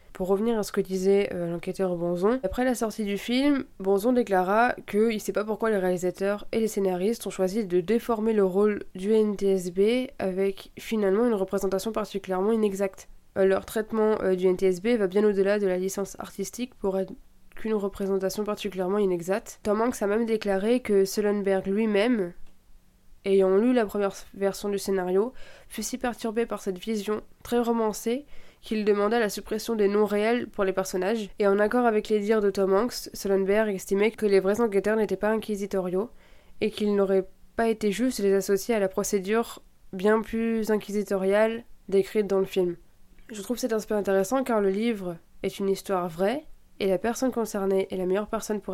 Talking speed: 185 wpm